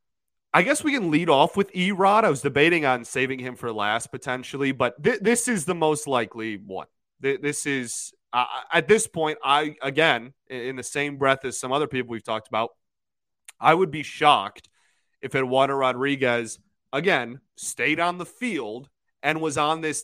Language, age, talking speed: English, 30-49, 185 wpm